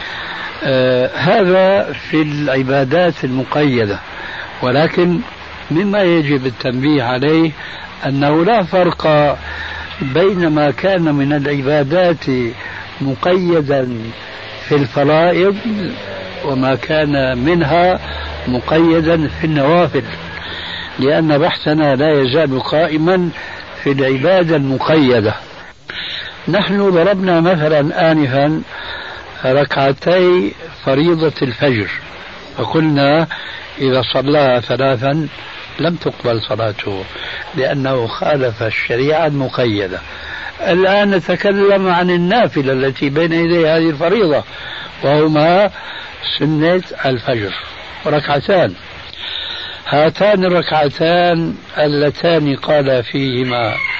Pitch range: 130-165 Hz